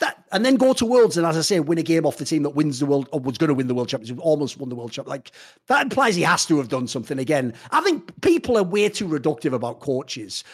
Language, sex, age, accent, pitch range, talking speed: English, male, 40-59, British, 180-285 Hz, 295 wpm